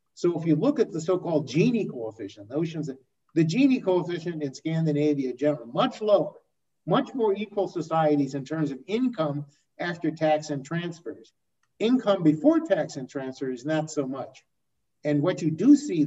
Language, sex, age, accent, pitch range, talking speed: English, male, 50-69, American, 135-180 Hz, 165 wpm